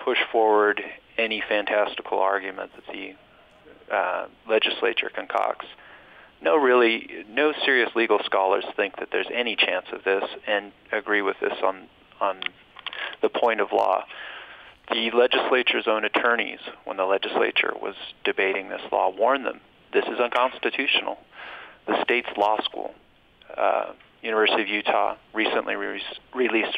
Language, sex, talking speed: English, male, 130 wpm